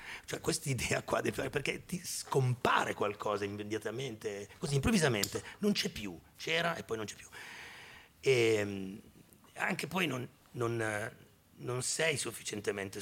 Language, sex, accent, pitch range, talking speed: Italian, male, native, 85-120 Hz, 135 wpm